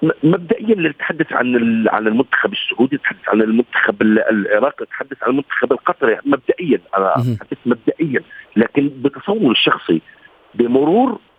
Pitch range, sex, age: 145-210 Hz, male, 50-69